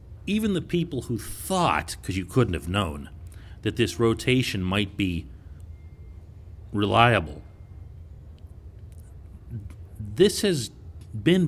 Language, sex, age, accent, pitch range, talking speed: English, male, 40-59, American, 90-125 Hz, 100 wpm